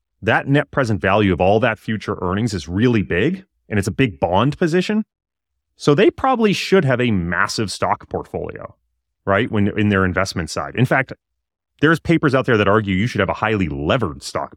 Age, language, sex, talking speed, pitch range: 30-49, English, male, 200 wpm, 90-130 Hz